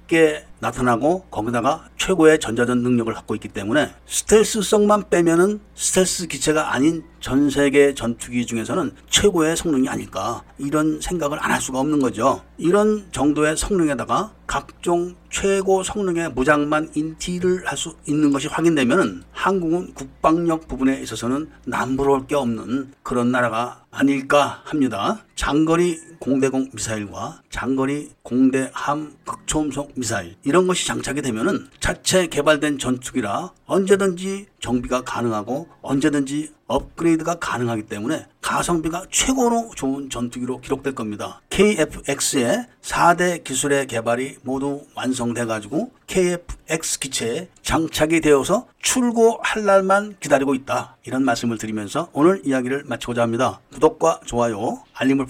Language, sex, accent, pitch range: Korean, male, native, 125-170 Hz